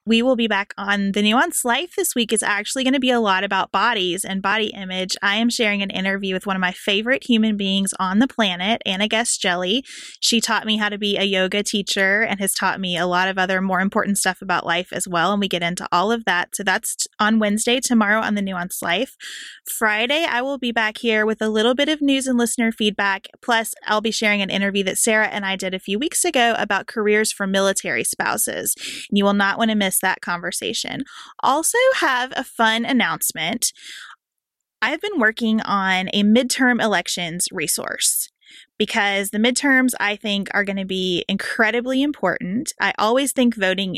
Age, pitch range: 20-39, 195-240 Hz